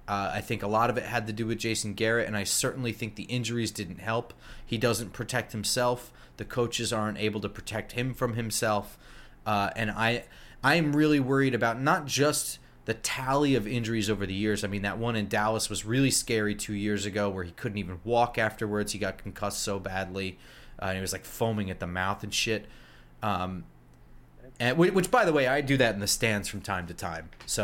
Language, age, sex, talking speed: English, 30-49, male, 220 wpm